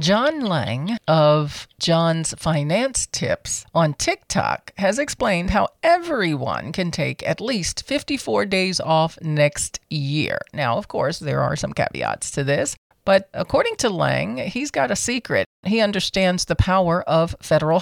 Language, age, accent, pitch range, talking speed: English, 40-59, American, 145-185 Hz, 150 wpm